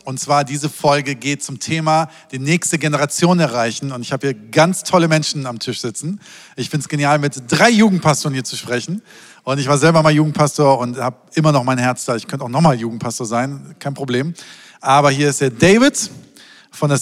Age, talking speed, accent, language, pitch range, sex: 50-69, 210 wpm, German, German, 130-160 Hz, male